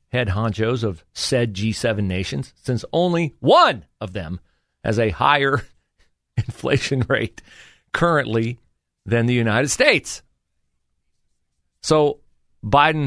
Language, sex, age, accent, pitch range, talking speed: English, male, 40-59, American, 95-125 Hz, 105 wpm